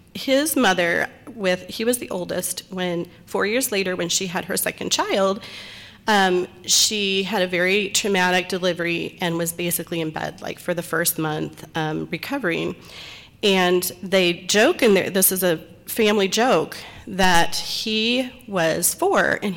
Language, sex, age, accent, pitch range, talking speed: English, female, 40-59, American, 175-230 Hz, 155 wpm